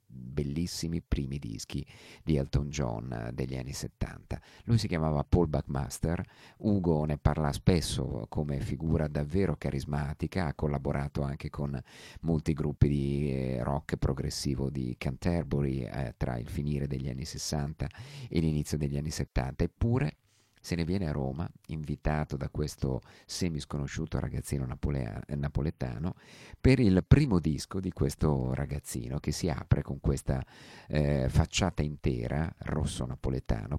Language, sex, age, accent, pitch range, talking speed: Italian, male, 50-69, native, 70-80 Hz, 130 wpm